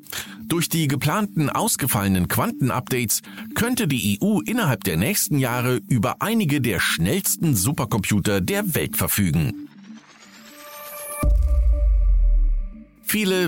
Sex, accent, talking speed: male, German, 95 wpm